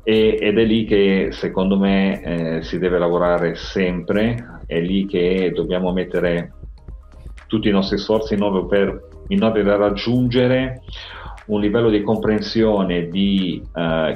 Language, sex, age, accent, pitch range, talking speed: Italian, male, 40-59, native, 85-105 Hz, 140 wpm